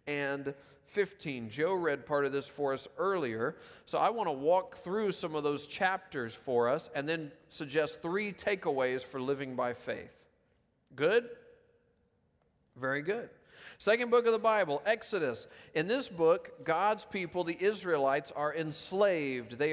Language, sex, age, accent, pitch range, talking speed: English, male, 40-59, American, 145-195 Hz, 150 wpm